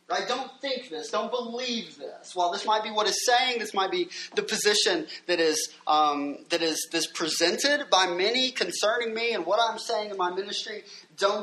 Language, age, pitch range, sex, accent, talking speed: English, 20-39, 175-245 Hz, male, American, 200 wpm